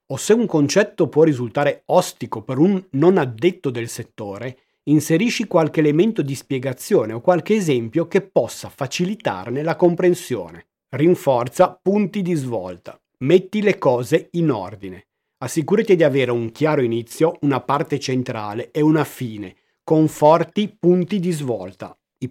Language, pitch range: Italian, 130-180 Hz